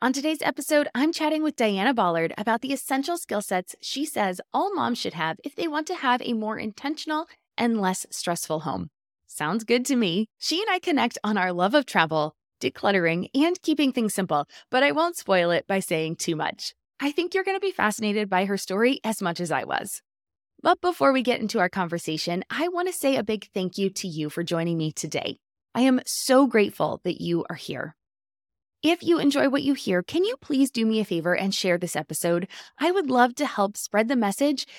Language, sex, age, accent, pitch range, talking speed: English, female, 20-39, American, 185-285 Hz, 220 wpm